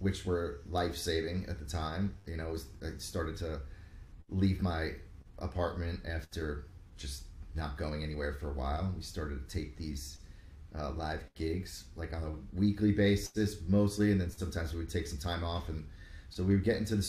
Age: 30-49